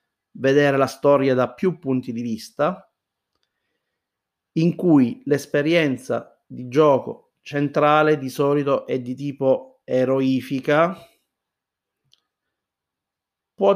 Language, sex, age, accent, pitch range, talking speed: Italian, male, 30-49, native, 120-155 Hz, 90 wpm